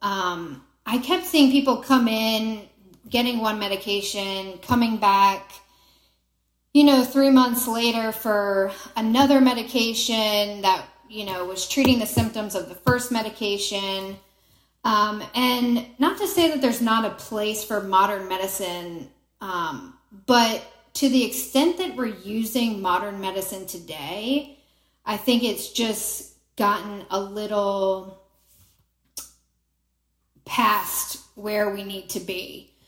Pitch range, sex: 195-245 Hz, female